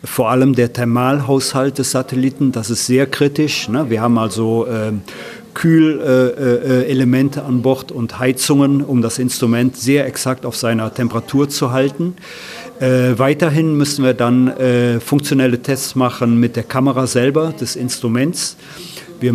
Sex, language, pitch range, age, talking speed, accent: male, German, 125-140 Hz, 40-59, 130 wpm, German